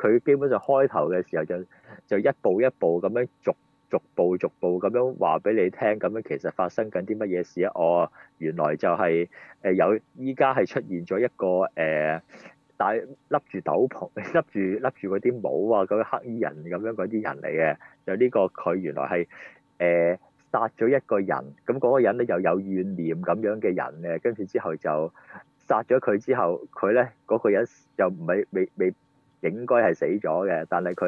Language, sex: Chinese, male